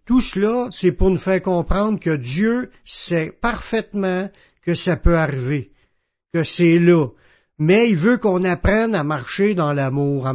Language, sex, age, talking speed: French, male, 60-79, 160 wpm